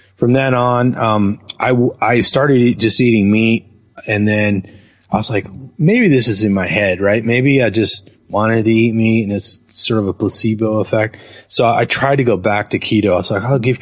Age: 30-49